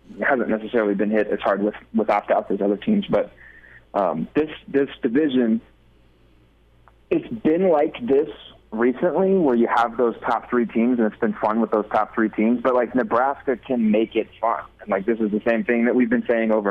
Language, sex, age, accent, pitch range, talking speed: English, male, 20-39, American, 105-120 Hz, 205 wpm